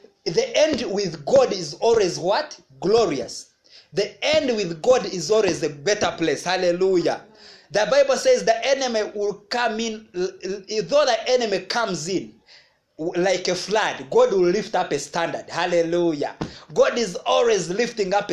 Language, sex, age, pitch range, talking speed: English, male, 30-49, 165-225 Hz, 150 wpm